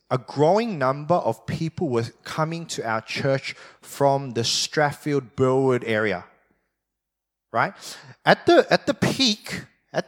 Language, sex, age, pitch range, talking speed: English, male, 20-39, 120-160 Hz, 130 wpm